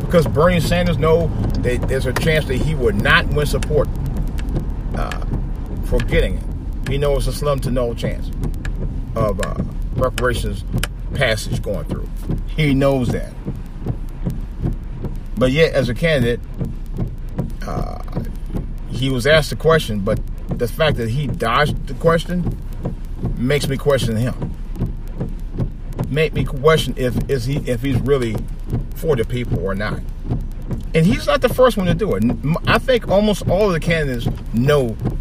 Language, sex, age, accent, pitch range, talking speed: English, male, 40-59, American, 115-150 Hz, 150 wpm